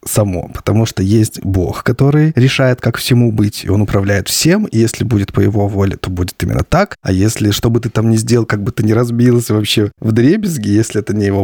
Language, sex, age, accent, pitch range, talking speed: Russian, male, 20-39, native, 105-130 Hz, 230 wpm